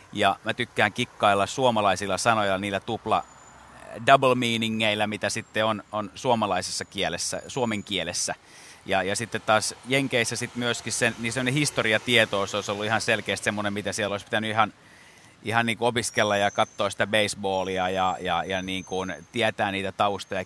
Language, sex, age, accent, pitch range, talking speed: Finnish, male, 30-49, native, 100-125 Hz, 160 wpm